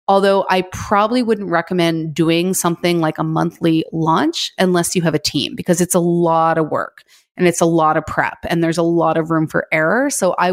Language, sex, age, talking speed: English, female, 30-49, 215 wpm